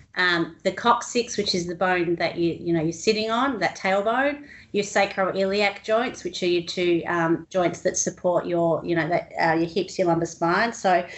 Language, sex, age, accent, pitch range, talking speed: English, female, 30-49, Australian, 170-200 Hz, 205 wpm